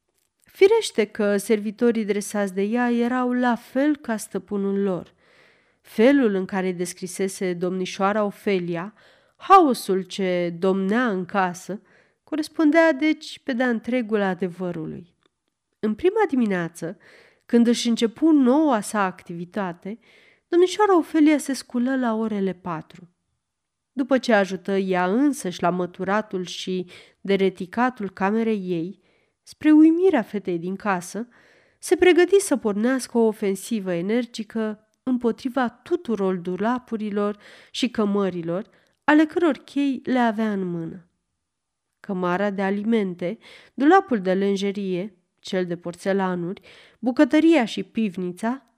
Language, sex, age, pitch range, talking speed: Romanian, female, 30-49, 190-255 Hz, 115 wpm